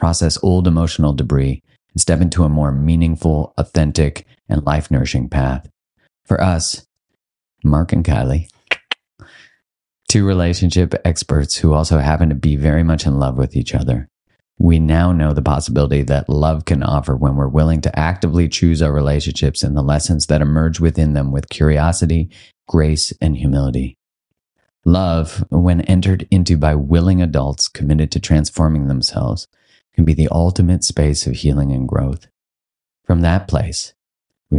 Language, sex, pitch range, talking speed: English, male, 70-85 Hz, 150 wpm